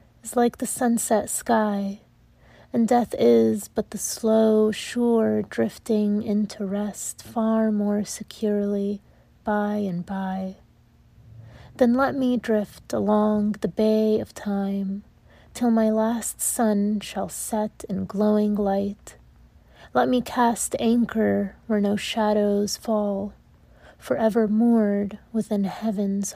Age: 30-49